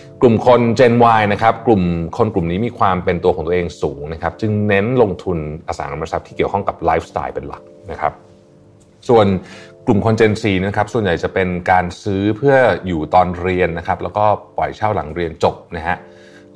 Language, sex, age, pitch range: Thai, male, 30-49, 85-110 Hz